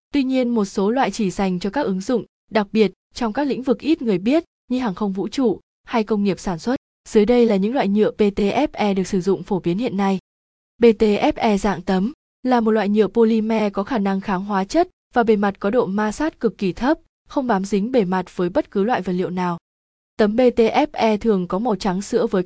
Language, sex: Vietnamese, female